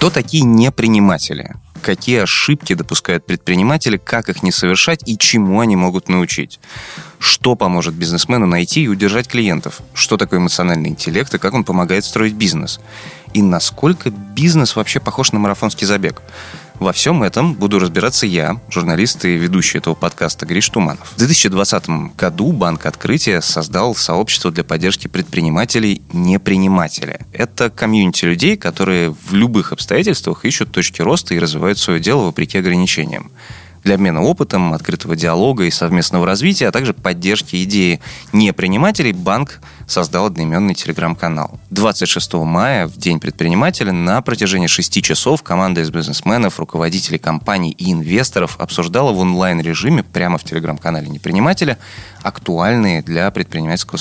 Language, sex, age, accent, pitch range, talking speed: Russian, male, 20-39, native, 85-115 Hz, 140 wpm